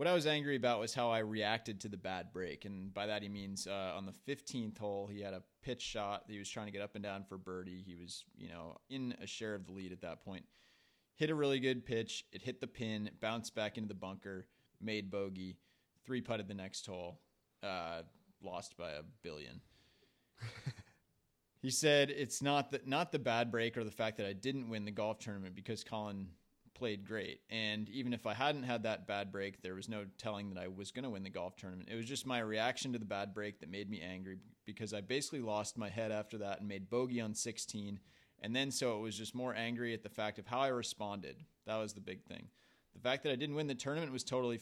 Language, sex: English, male